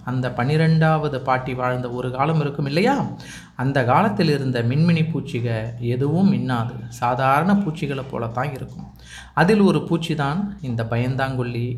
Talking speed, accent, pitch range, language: 125 wpm, native, 130-170 Hz, Tamil